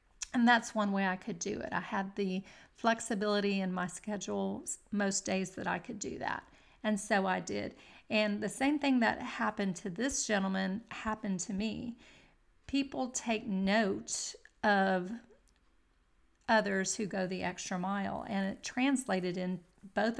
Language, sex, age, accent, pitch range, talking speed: English, female, 40-59, American, 195-235 Hz, 155 wpm